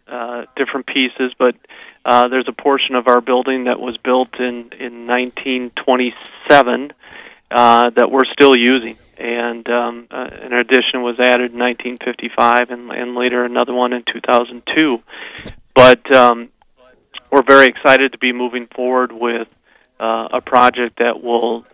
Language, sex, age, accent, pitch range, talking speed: English, male, 40-59, American, 120-130 Hz, 145 wpm